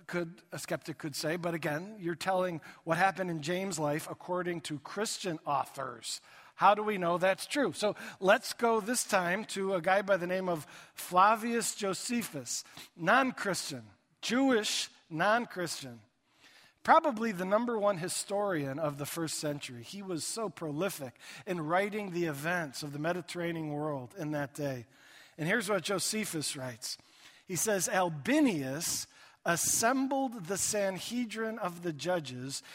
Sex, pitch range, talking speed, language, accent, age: male, 155-205 Hz, 150 wpm, English, American, 50-69